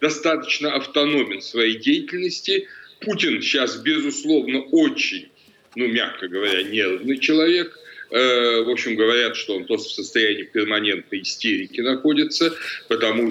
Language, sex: Russian, male